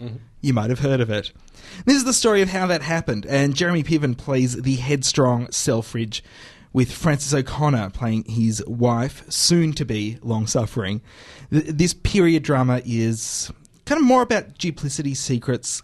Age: 20-39